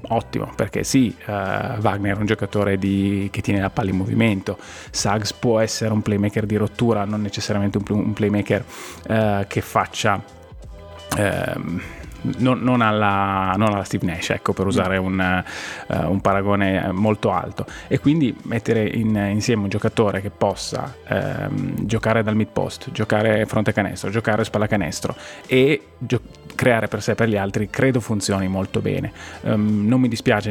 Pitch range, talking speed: 95-110 Hz, 165 wpm